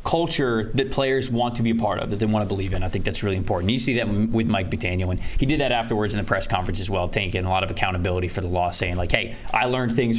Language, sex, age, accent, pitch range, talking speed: English, male, 20-39, American, 105-135 Hz, 300 wpm